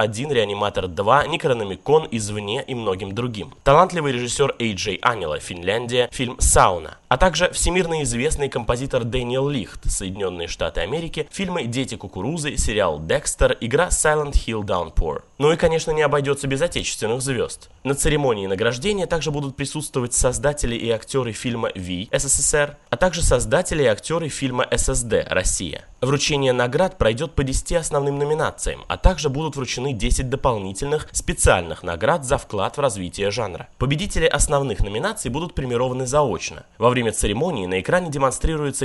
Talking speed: 145 wpm